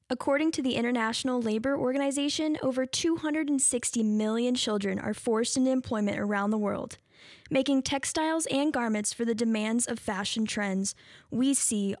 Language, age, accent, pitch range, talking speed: English, 10-29, American, 220-280 Hz, 145 wpm